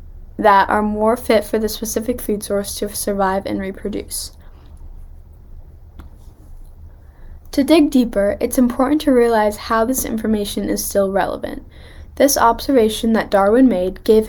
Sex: female